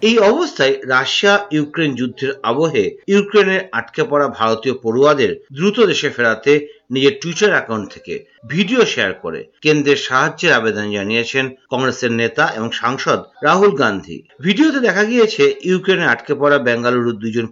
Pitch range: 130-195 Hz